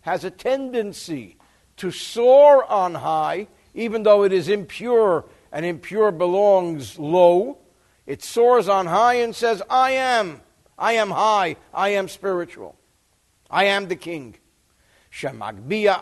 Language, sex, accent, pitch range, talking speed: English, male, American, 150-215 Hz, 130 wpm